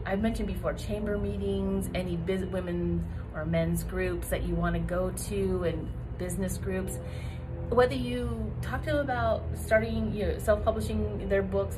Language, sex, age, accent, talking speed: English, female, 30-49, American, 165 wpm